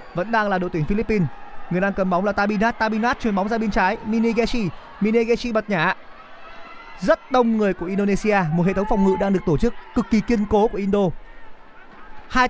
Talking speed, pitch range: 205 wpm, 175-220 Hz